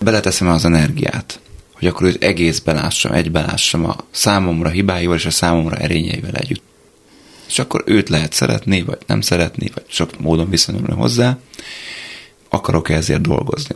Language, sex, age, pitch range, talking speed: Hungarian, male, 30-49, 85-100 Hz, 150 wpm